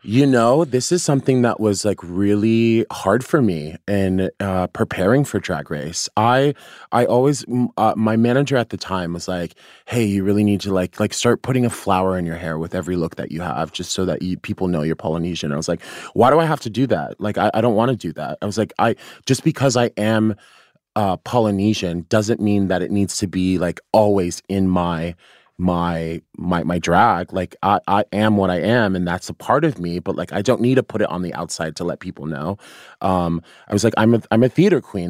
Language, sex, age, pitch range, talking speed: English, male, 20-39, 90-110 Hz, 240 wpm